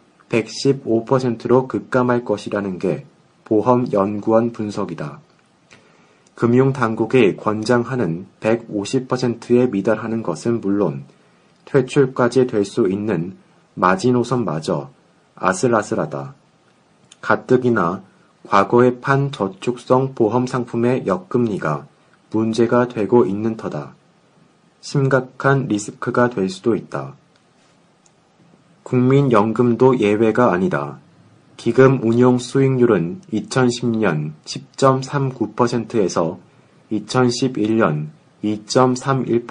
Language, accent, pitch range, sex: Korean, native, 105-130 Hz, male